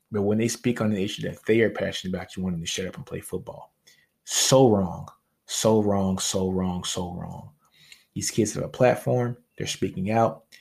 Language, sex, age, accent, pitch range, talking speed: English, male, 20-39, American, 95-110 Hz, 210 wpm